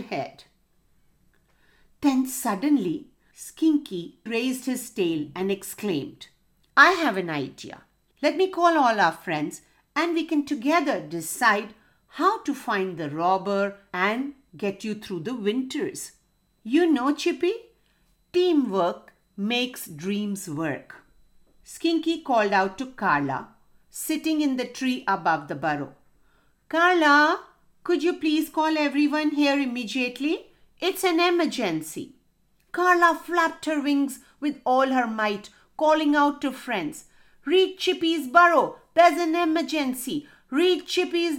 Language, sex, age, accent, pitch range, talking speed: English, female, 50-69, Indian, 200-320 Hz, 125 wpm